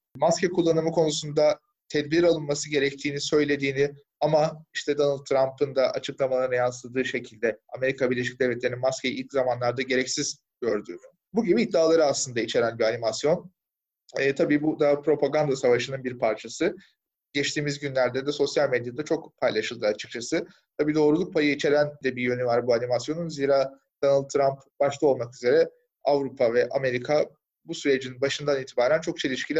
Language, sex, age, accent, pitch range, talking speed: Turkish, male, 30-49, native, 130-155 Hz, 145 wpm